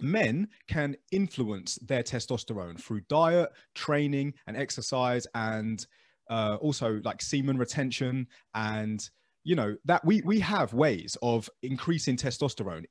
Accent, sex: British, male